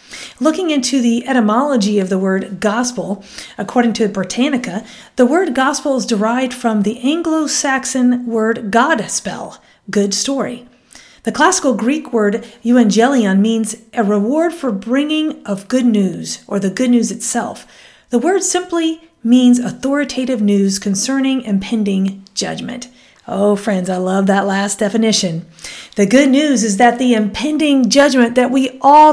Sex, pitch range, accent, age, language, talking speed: female, 210-285 Hz, American, 40-59, English, 140 wpm